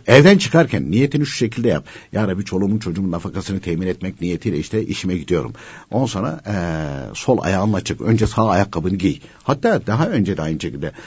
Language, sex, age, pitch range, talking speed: Turkish, male, 60-79, 90-140 Hz, 180 wpm